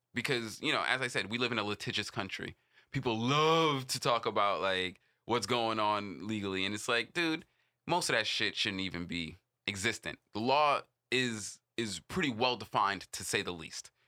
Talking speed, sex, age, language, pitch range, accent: 190 wpm, male, 20-39, English, 100-130 Hz, American